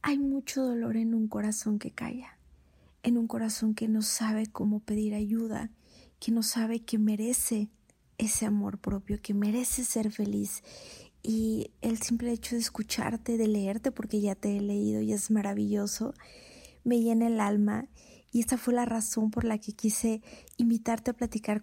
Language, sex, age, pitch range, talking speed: Spanish, female, 30-49, 215-235 Hz, 170 wpm